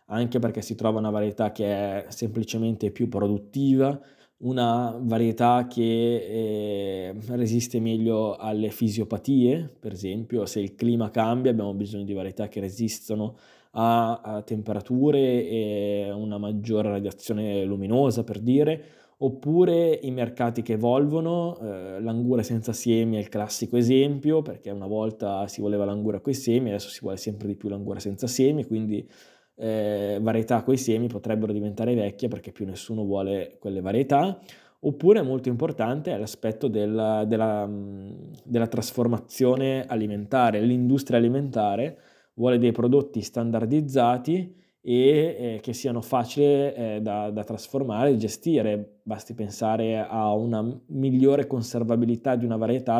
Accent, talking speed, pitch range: native, 140 wpm, 105-125 Hz